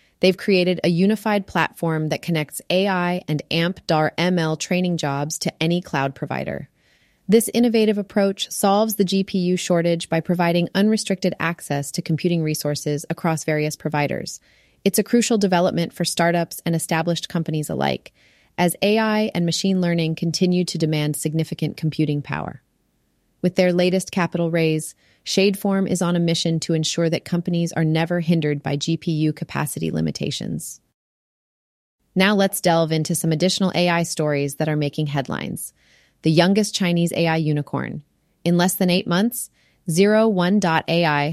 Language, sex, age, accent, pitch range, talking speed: English, female, 30-49, American, 155-185 Hz, 140 wpm